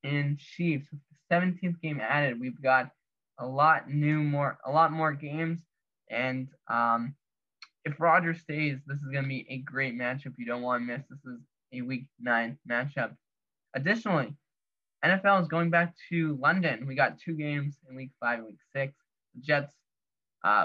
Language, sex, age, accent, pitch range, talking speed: English, male, 10-29, American, 130-155 Hz, 175 wpm